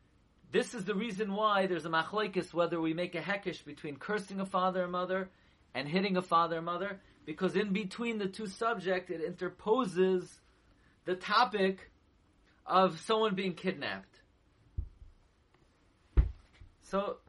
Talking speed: 140 wpm